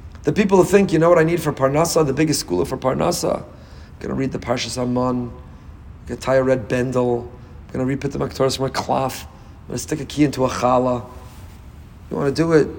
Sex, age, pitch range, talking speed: male, 40-59, 115-155 Hz, 250 wpm